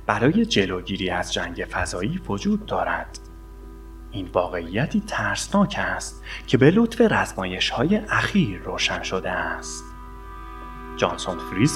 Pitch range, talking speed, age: 80-115 Hz, 110 wpm, 30-49